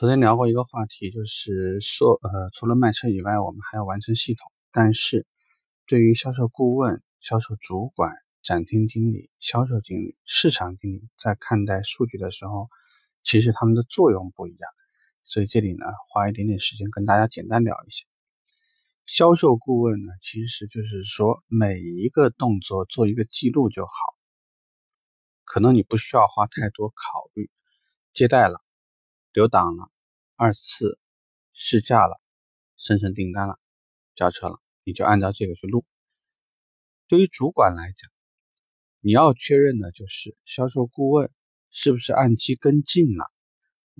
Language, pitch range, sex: Chinese, 100-125 Hz, male